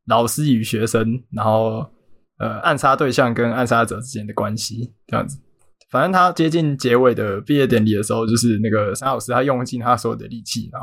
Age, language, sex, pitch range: 20-39, Chinese, male, 115-140 Hz